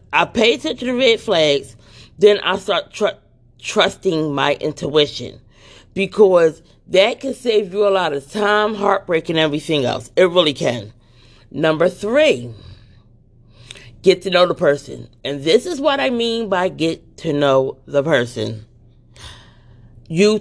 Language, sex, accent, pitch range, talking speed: English, female, American, 115-190 Hz, 145 wpm